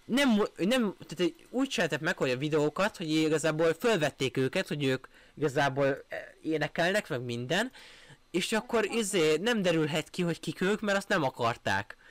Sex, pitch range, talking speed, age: male, 145-200 Hz, 150 wpm, 20-39